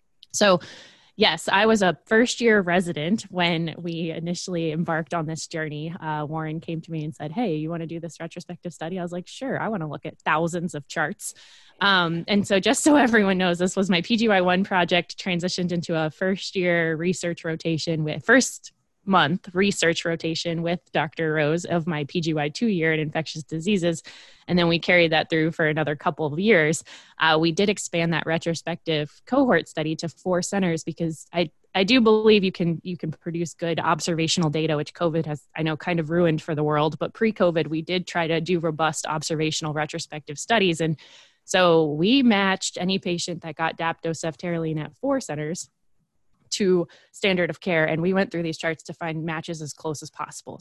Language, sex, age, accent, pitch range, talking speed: English, female, 20-39, American, 155-180 Hz, 190 wpm